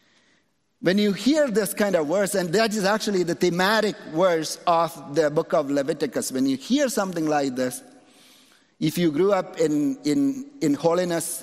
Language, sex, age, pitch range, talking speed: English, male, 50-69, 150-200 Hz, 175 wpm